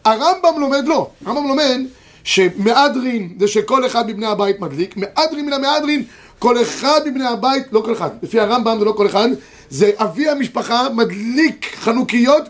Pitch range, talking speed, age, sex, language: 205-280 Hz, 160 wpm, 30-49, male, Hebrew